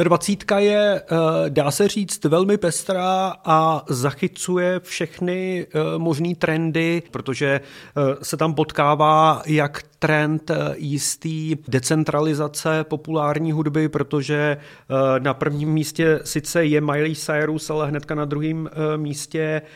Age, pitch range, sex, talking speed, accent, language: 30-49, 140-155 Hz, male, 105 wpm, native, Czech